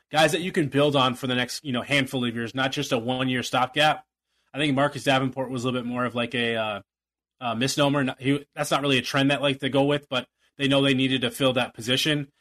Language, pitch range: English, 125-140 Hz